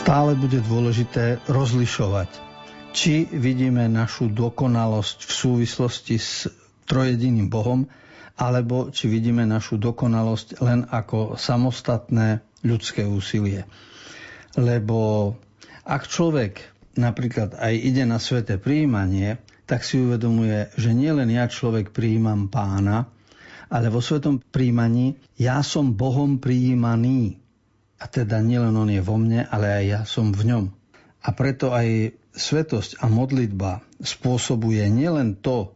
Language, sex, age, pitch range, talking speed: Slovak, male, 50-69, 105-125 Hz, 120 wpm